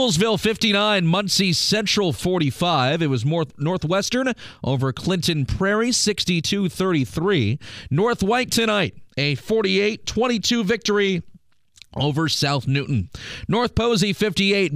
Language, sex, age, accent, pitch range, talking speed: English, male, 40-59, American, 145-210 Hz, 100 wpm